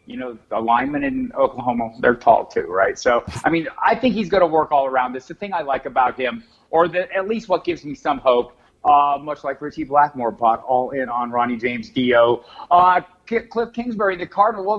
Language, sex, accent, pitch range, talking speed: English, male, American, 125-190 Hz, 225 wpm